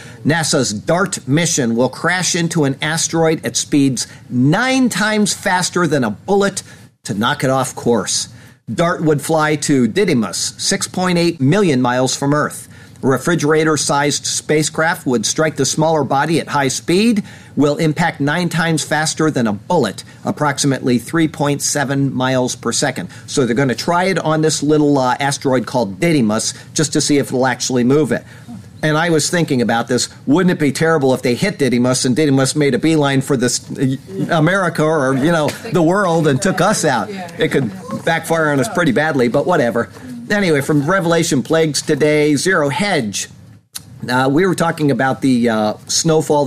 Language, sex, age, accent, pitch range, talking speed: English, male, 50-69, American, 130-160 Hz, 170 wpm